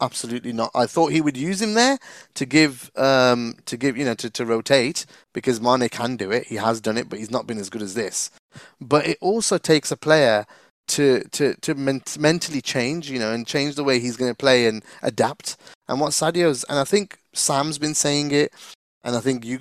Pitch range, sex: 130-165 Hz, male